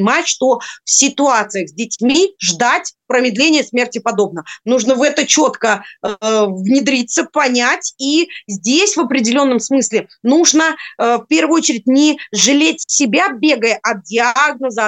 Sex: female